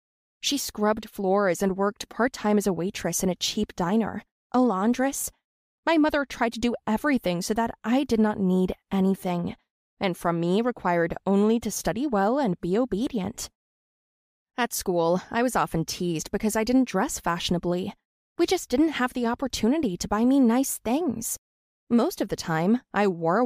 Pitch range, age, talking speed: 195-250 Hz, 20-39, 170 wpm